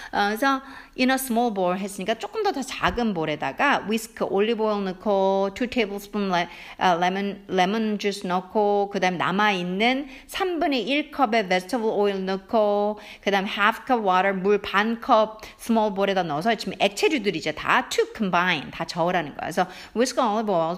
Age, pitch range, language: 50-69, 185-265 Hz, Korean